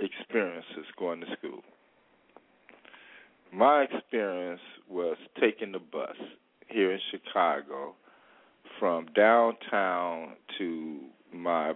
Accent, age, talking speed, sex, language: American, 50-69, 85 wpm, male, English